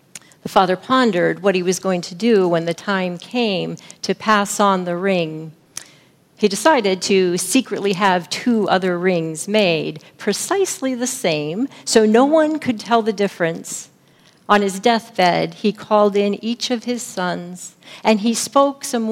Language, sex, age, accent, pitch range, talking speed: English, female, 50-69, American, 185-235 Hz, 160 wpm